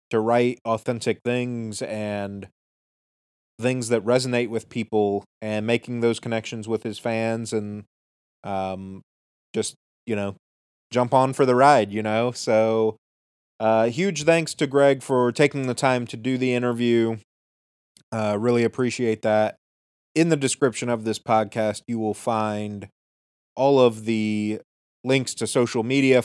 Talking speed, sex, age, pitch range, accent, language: 145 wpm, male, 30-49, 105-125 Hz, American, English